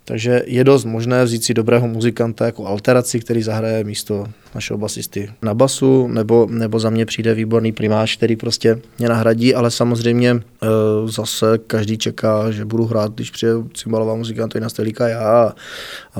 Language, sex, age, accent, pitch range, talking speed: Czech, male, 20-39, native, 110-120 Hz, 165 wpm